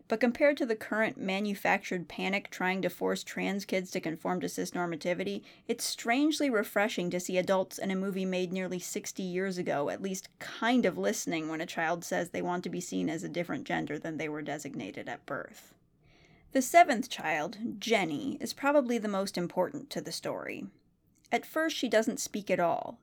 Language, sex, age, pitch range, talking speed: English, female, 30-49, 180-230 Hz, 190 wpm